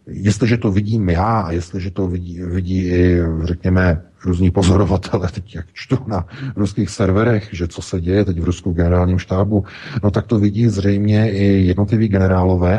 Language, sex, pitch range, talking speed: Czech, male, 85-100 Hz, 175 wpm